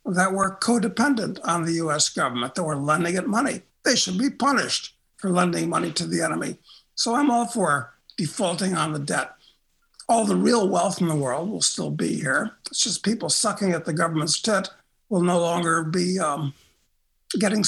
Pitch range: 160-205 Hz